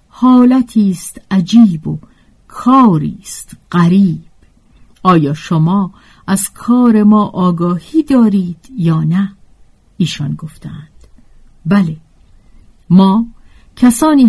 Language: Persian